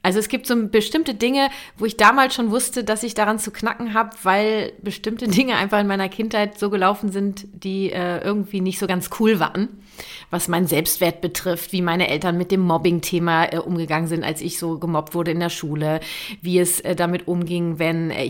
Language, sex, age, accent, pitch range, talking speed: German, female, 30-49, German, 175-230 Hz, 205 wpm